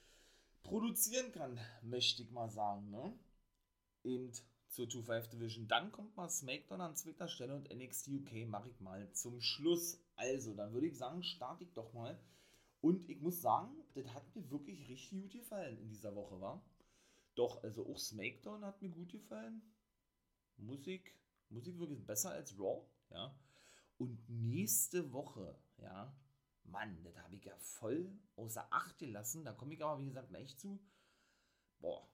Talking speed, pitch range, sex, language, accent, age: 165 wpm, 105-145 Hz, male, German, German, 30-49